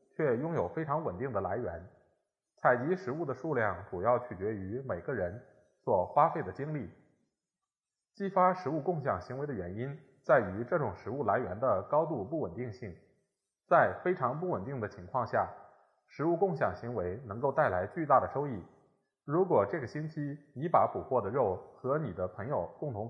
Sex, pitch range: male, 115-165 Hz